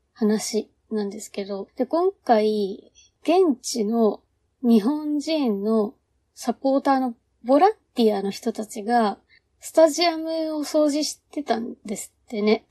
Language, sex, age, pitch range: Japanese, female, 20-39, 210-285 Hz